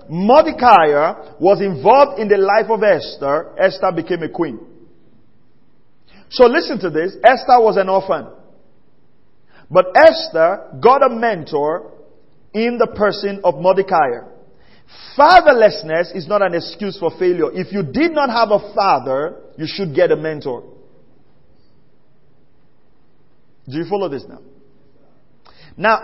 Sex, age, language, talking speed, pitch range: male, 40-59, English, 125 wpm, 165-235 Hz